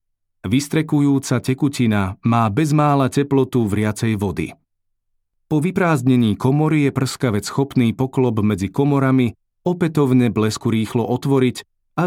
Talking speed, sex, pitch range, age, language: 105 wpm, male, 105-140 Hz, 40-59, Slovak